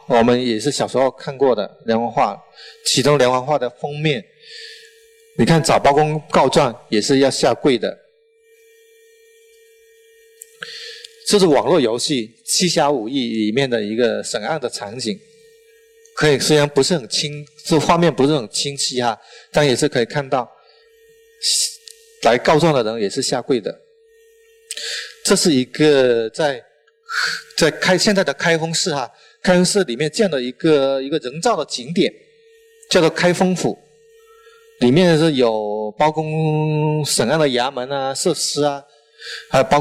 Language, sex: Chinese, male